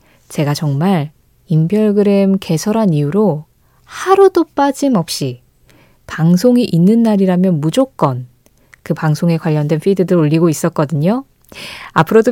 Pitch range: 160-225 Hz